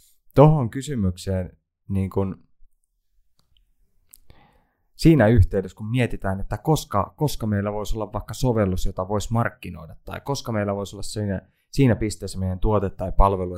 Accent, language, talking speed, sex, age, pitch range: native, Finnish, 135 wpm, male, 20-39, 95-120 Hz